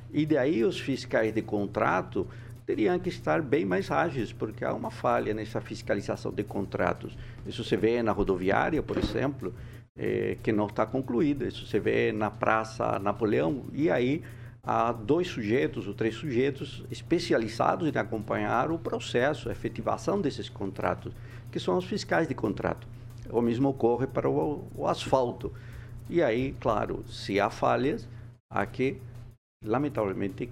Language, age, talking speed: Portuguese, 60-79, 150 wpm